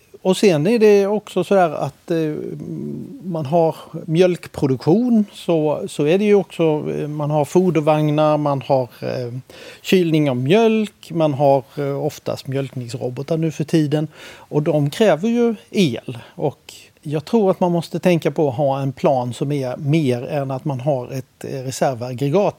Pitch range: 135-175 Hz